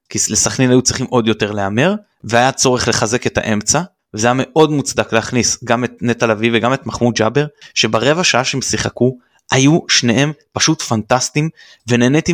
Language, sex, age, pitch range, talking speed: Hebrew, male, 20-39, 115-145 Hz, 165 wpm